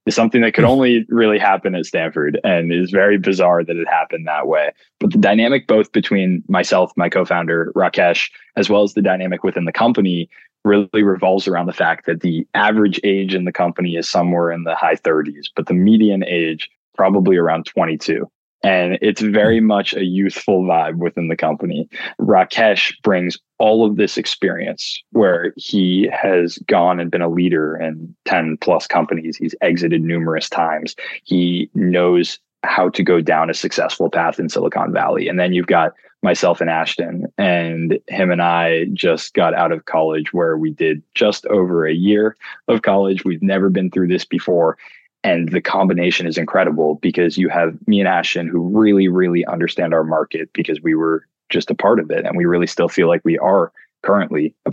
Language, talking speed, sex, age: English, 185 wpm, male, 20-39